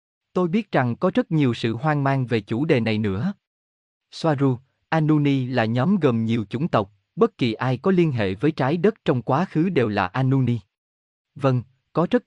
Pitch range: 110-155 Hz